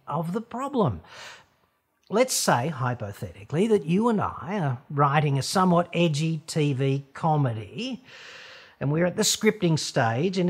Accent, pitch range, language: Australian, 125-175 Hz, English